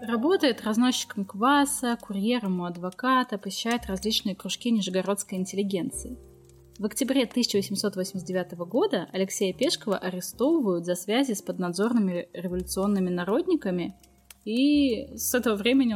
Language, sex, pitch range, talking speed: Russian, female, 190-245 Hz, 105 wpm